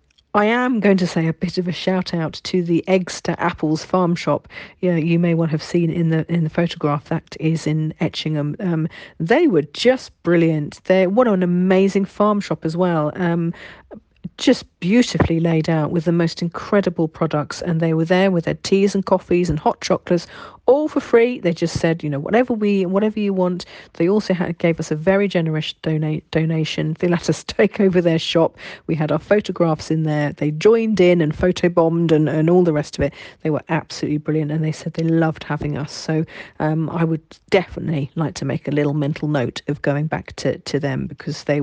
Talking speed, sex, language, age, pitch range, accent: 210 wpm, female, English, 40-59, 155-190 Hz, British